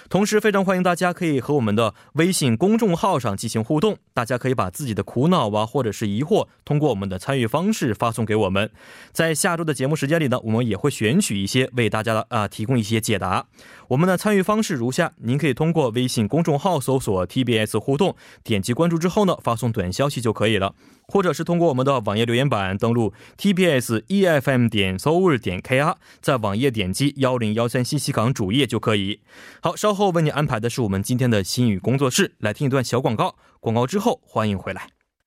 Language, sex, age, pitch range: Korean, male, 20-39, 110-165 Hz